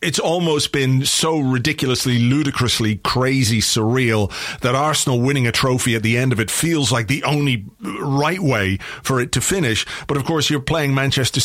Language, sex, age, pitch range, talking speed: English, male, 30-49, 115-140 Hz, 180 wpm